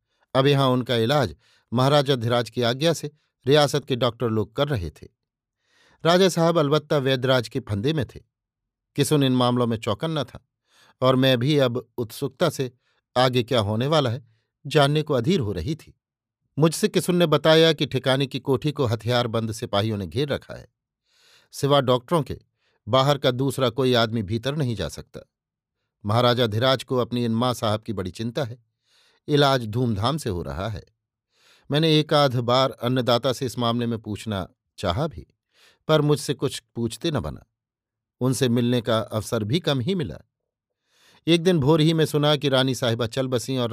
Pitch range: 115-140 Hz